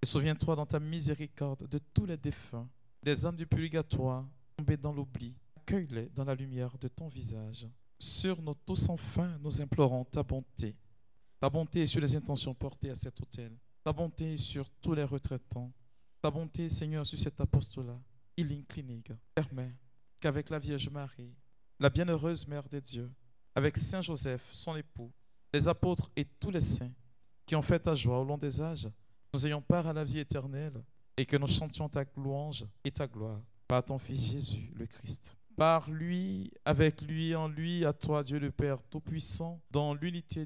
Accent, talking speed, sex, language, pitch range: French, 180 wpm, male, French, 120-150 Hz